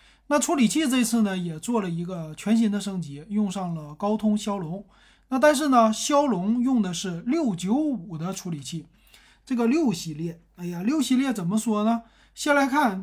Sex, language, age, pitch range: male, Chinese, 30-49, 170-230 Hz